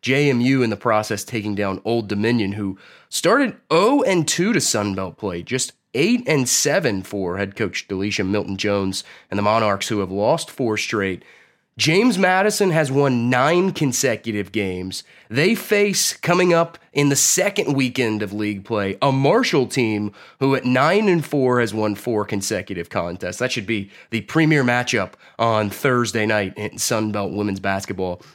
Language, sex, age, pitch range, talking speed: English, male, 30-49, 105-145 Hz, 150 wpm